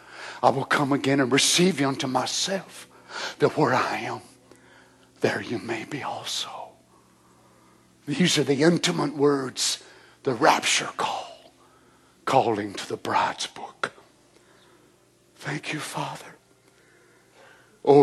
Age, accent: 60-79, American